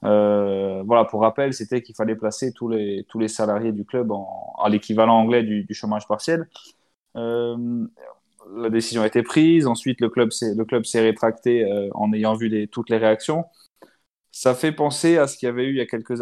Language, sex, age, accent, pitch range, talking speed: French, male, 20-39, French, 105-125 Hz, 210 wpm